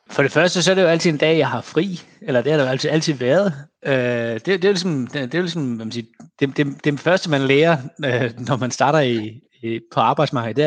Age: 30-49